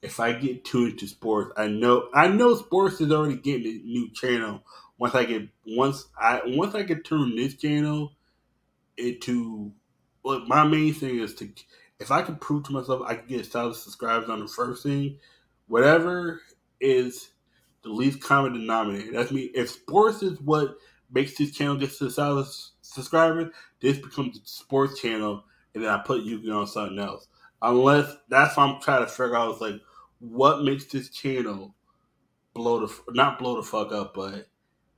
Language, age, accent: English, 20-39, American